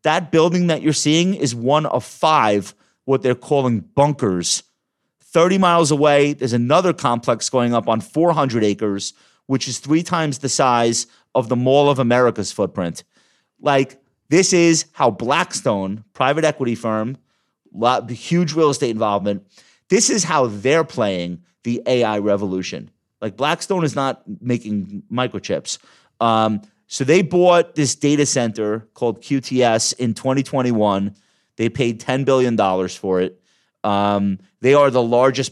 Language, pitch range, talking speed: English, 105-140 Hz, 145 wpm